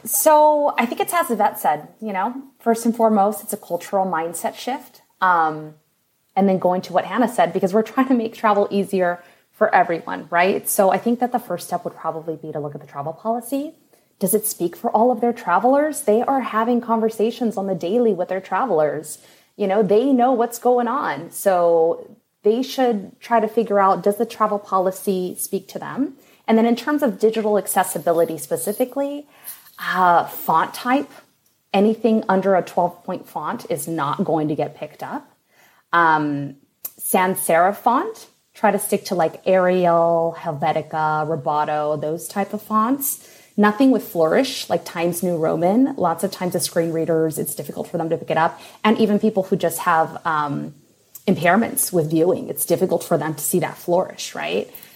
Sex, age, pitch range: female, 20-39, 170-230 Hz